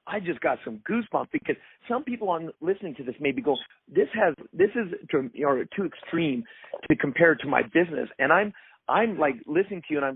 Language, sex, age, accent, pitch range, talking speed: English, male, 50-69, American, 160-230 Hz, 220 wpm